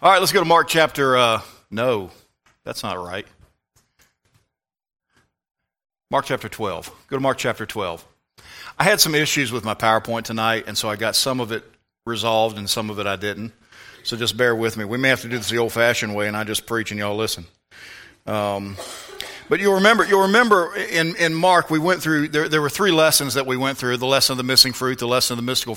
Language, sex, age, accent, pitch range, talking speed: English, male, 40-59, American, 120-165 Hz, 220 wpm